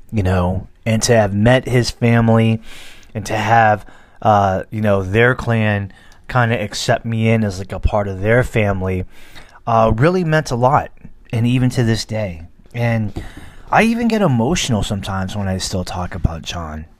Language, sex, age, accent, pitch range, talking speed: English, male, 30-49, American, 95-115 Hz, 175 wpm